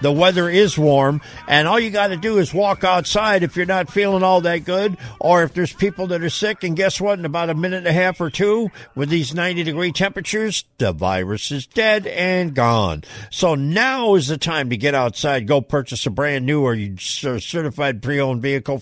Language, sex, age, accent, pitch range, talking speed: English, male, 60-79, American, 120-175 Hz, 215 wpm